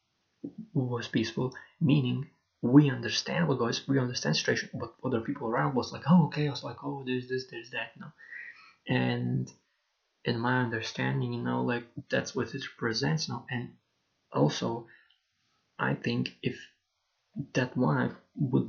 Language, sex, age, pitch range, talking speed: English, male, 20-39, 115-140 Hz, 165 wpm